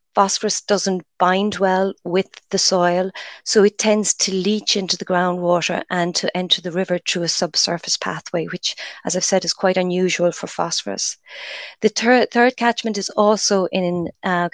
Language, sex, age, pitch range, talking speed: English, female, 30-49, 175-200 Hz, 170 wpm